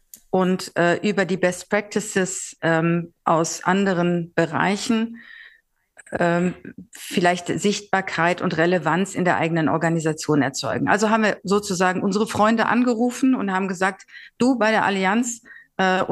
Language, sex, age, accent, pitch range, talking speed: German, female, 50-69, German, 175-210 Hz, 130 wpm